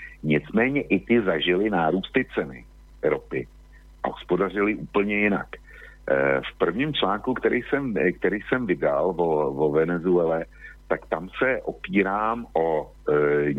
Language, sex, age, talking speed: Slovak, male, 60-79, 120 wpm